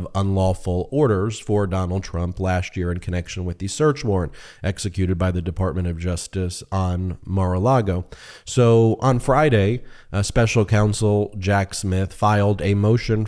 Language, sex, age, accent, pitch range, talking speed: English, male, 30-49, American, 95-110 Hz, 145 wpm